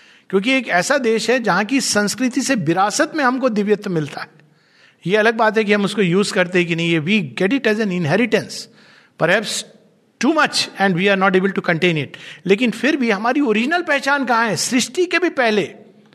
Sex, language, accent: male, Hindi, native